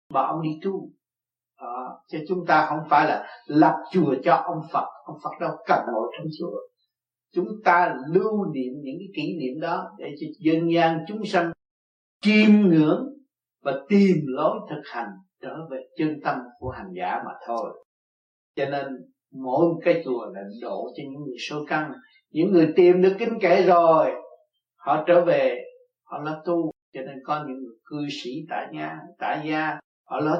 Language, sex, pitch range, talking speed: Vietnamese, male, 150-185 Hz, 185 wpm